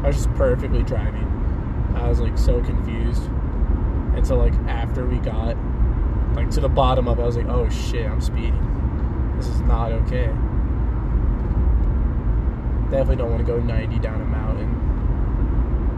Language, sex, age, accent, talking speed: English, male, 20-39, American, 145 wpm